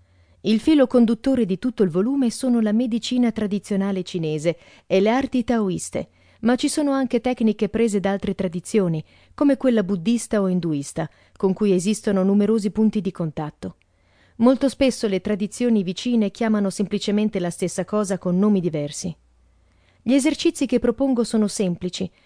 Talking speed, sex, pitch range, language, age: 150 wpm, female, 175-235 Hz, Italian, 40-59